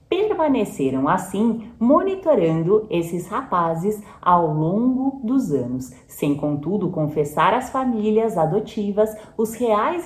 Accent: Brazilian